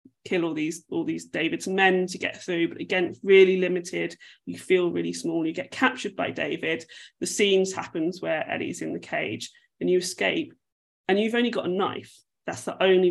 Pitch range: 175-210 Hz